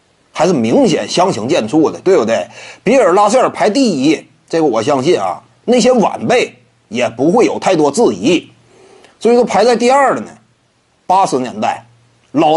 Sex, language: male, Chinese